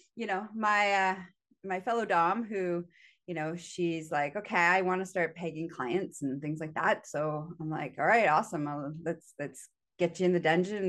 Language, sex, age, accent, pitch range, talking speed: English, female, 20-39, American, 160-190 Hz, 205 wpm